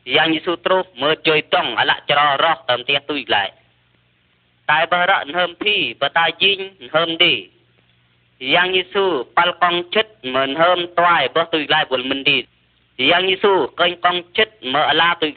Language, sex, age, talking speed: Vietnamese, female, 20-39, 145 wpm